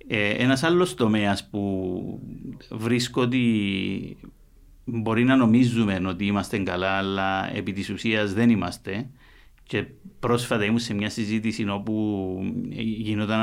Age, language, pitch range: 50-69, Greek, 100-135 Hz